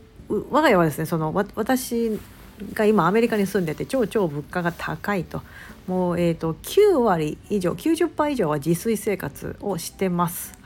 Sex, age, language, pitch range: female, 50-69, Japanese, 160-230 Hz